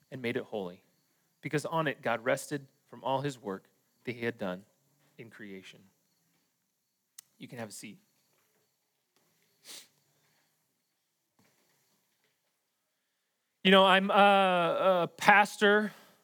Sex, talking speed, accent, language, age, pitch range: male, 105 wpm, American, English, 30-49, 165-205 Hz